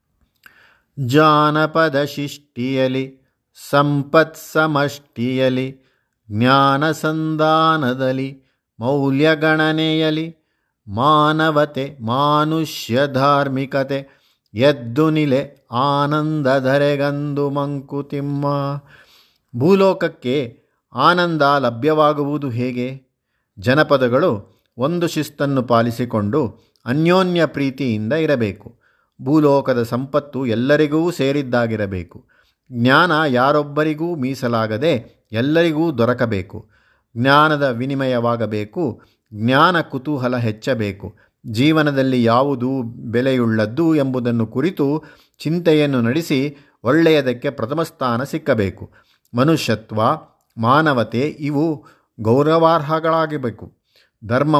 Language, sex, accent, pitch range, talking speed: Kannada, male, native, 120-150 Hz, 60 wpm